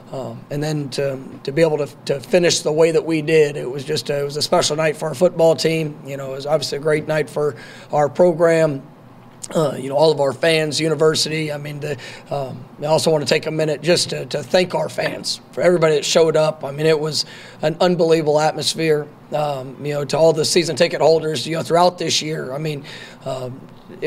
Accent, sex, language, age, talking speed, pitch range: American, male, English, 40-59, 230 wpm, 145-165 Hz